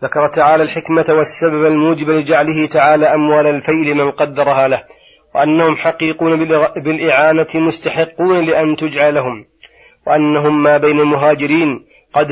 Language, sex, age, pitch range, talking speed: Arabic, male, 30-49, 150-165 Hz, 110 wpm